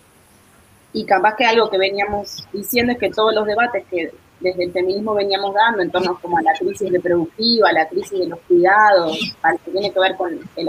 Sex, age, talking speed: female, 20-39, 210 wpm